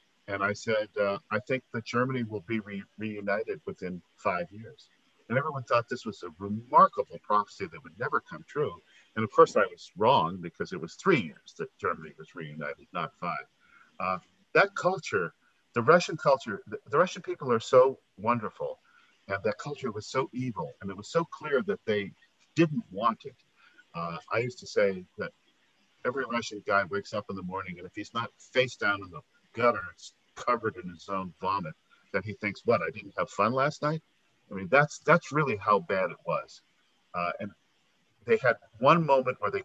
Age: 50-69